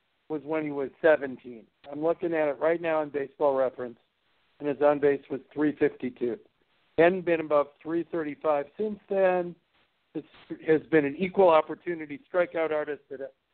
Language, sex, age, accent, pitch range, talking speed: English, male, 60-79, American, 140-160 Hz, 150 wpm